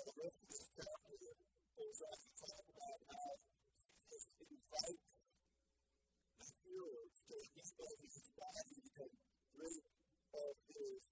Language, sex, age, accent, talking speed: English, female, 50-69, American, 120 wpm